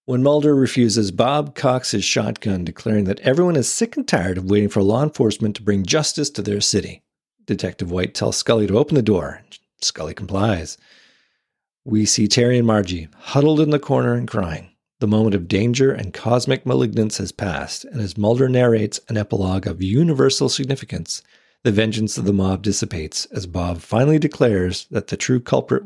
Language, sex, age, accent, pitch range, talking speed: English, male, 40-59, American, 95-130 Hz, 180 wpm